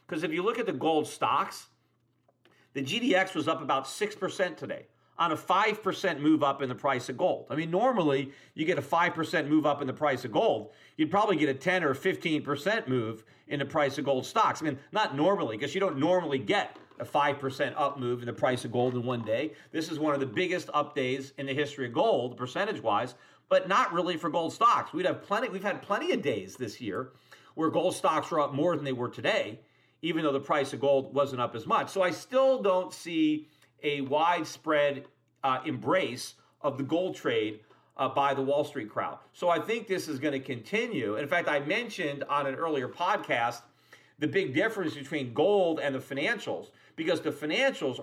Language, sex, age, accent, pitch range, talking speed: English, male, 40-59, American, 135-170 Hz, 210 wpm